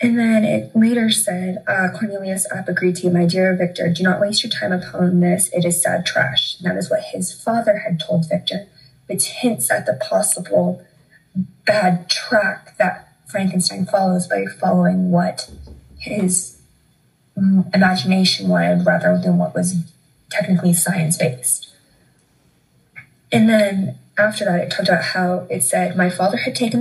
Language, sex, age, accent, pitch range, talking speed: English, female, 20-39, American, 170-210 Hz, 150 wpm